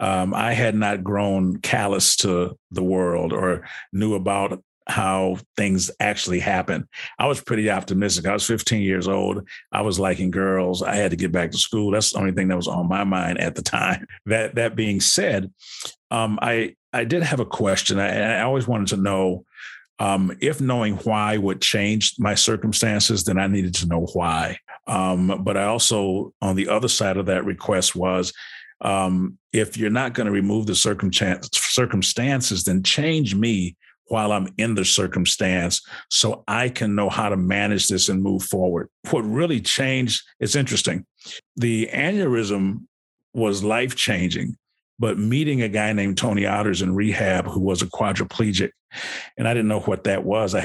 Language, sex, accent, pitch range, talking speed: English, male, American, 95-110 Hz, 180 wpm